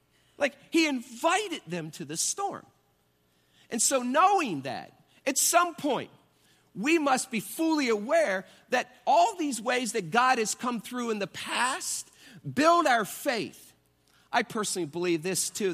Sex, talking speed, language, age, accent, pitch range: male, 150 wpm, English, 40-59, American, 145-235 Hz